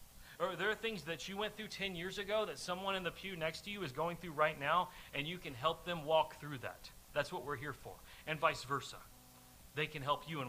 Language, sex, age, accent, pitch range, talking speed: English, male, 40-59, American, 145-190 Hz, 250 wpm